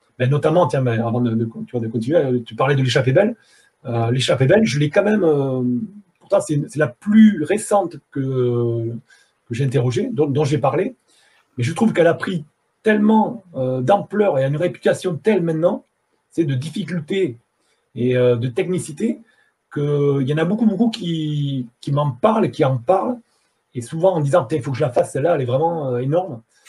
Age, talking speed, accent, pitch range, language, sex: 40-59, 195 wpm, French, 125-175 Hz, French, male